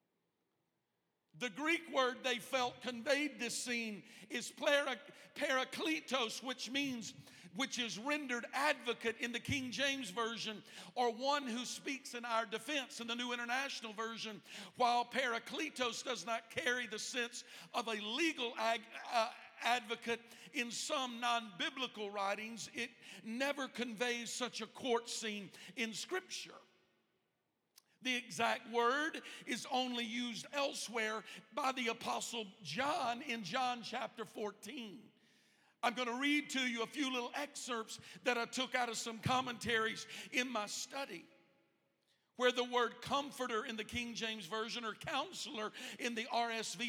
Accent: American